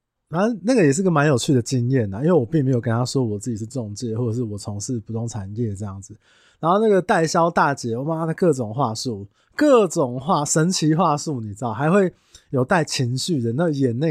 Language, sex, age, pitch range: Chinese, male, 20-39, 115-160 Hz